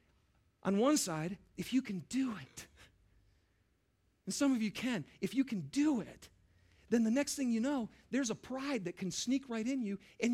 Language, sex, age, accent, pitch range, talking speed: English, male, 40-59, American, 160-265 Hz, 195 wpm